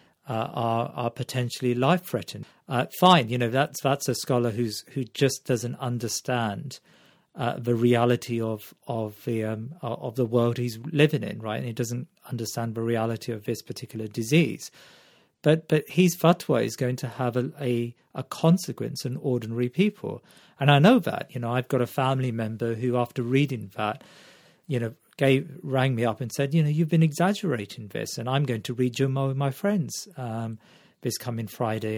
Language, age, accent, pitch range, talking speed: English, 40-59, British, 115-140 Hz, 190 wpm